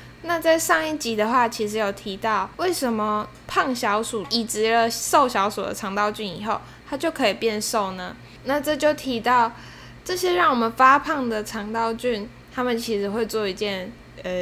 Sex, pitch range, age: female, 210-260 Hz, 10-29